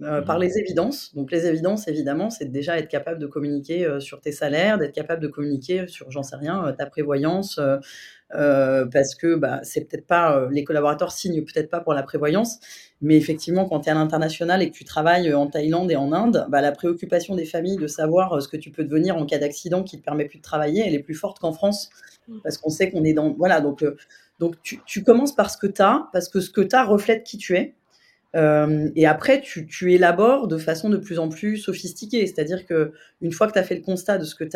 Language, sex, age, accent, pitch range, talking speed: French, female, 20-39, French, 155-200 Hz, 250 wpm